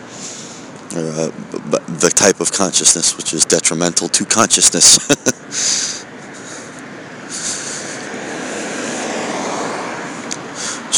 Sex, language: male, English